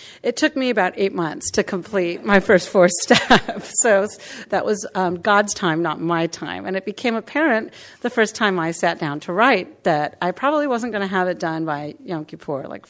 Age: 40-59